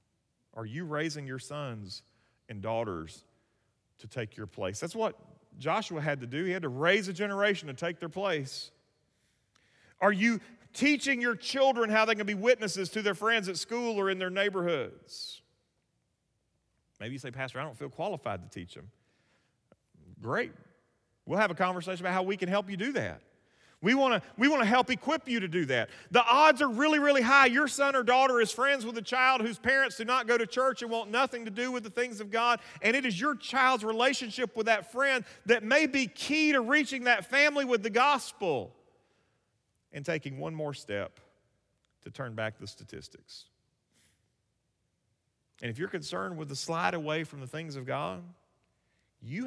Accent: American